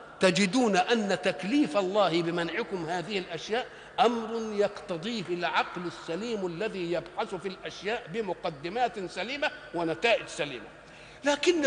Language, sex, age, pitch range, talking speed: Arabic, male, 50-69, 180-240 Hz, 105 wpm